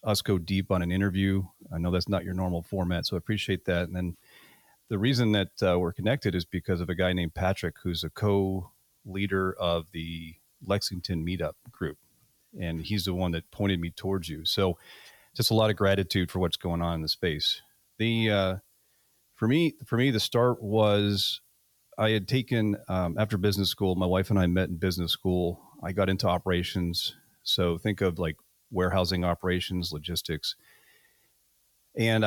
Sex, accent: male, American